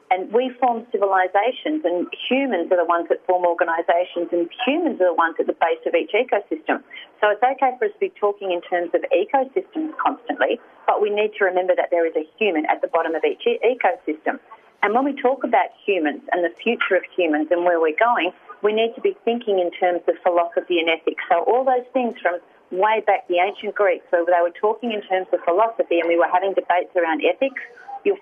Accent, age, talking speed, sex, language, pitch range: Australian, 40-59, 220 wpm, female, English, 170-235 Hz